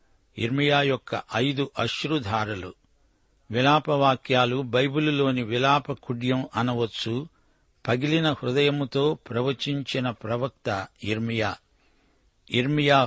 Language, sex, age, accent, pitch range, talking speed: Telugu, male, 60-79, native, 120-140 Hz, 65 wpm